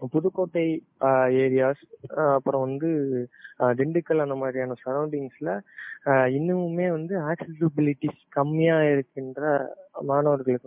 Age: 20-39